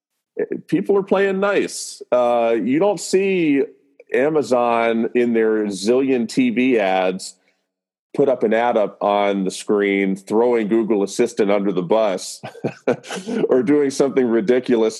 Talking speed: 130 wpm